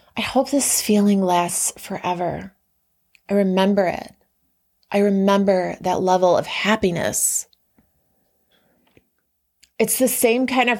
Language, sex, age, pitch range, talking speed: English, female, 20-39, 180-225 Hz, 110 wpm